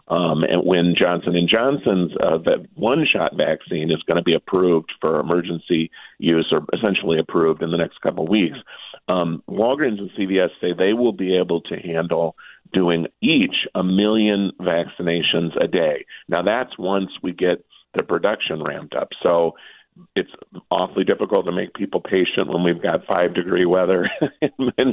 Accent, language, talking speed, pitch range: American, English, 170 wpm, 85-100 Hz